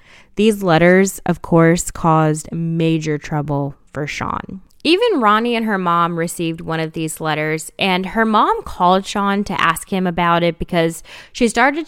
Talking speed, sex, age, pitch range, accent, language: 160 wpm, female, 10-29, 155-195 Hz, American, English